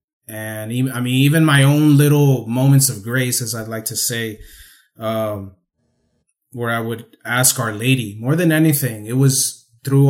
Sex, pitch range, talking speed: male, 110-140 Hz, 170 wpm